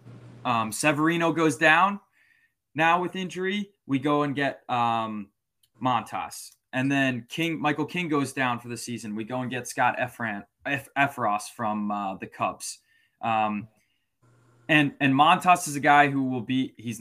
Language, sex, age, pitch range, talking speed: English, male, 20-39, 110-140 Hz, 160 wpm